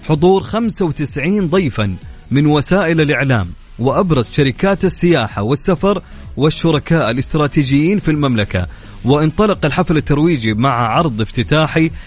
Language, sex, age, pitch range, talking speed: Arabic, male, 30-49, 115-160 Hz, 100 wpm